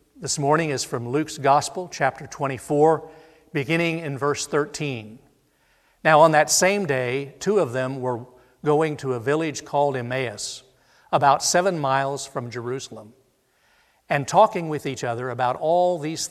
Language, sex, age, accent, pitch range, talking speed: English, male, 60-79, American, 125-155 Hz, 145 wpm